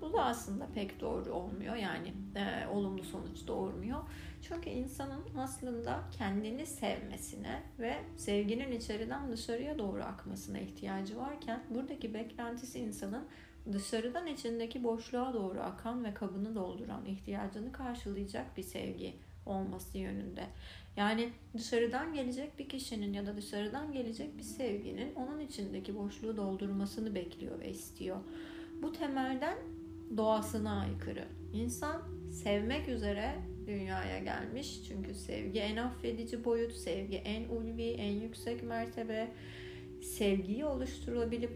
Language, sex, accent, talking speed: Turkish, female, native, 115 wpm